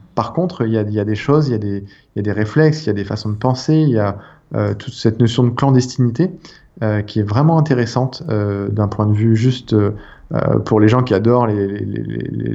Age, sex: 20-39, male